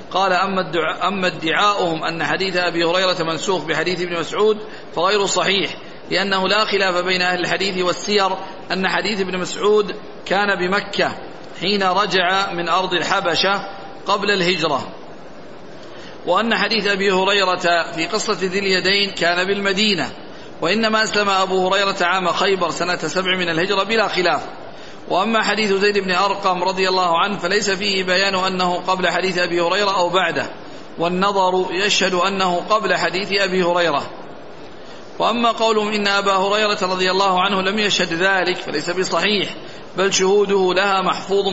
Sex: male